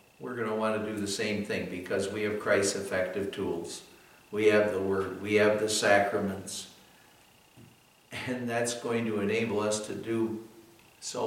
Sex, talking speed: male, 170 wpm